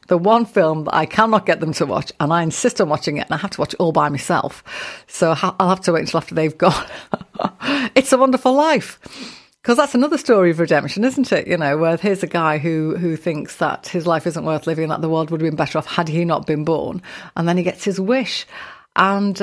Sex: female